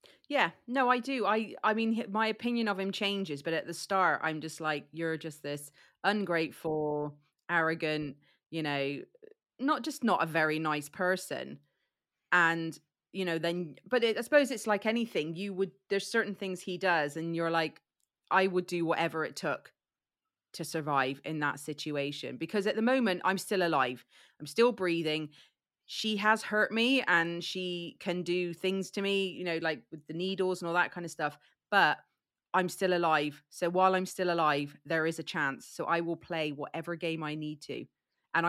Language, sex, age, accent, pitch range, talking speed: English, female, 30-49, British, 155-195 Hz, 190 wpm